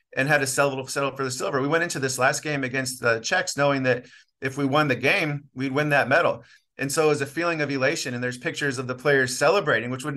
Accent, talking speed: American, 260 wpm